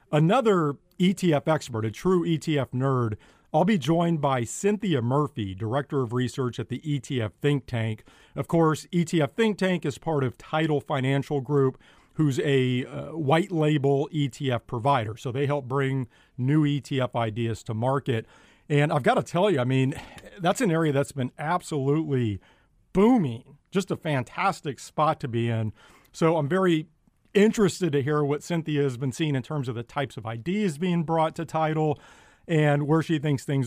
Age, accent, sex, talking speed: 40-59, American, male, 170 wpm